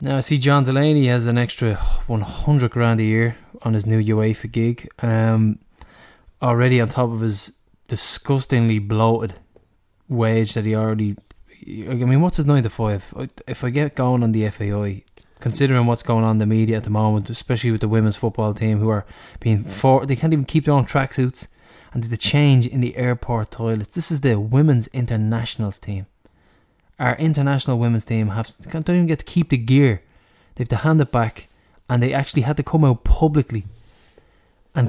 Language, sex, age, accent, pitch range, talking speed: English, male, 10-29, Irish, 110-140 Hz, 190 wpm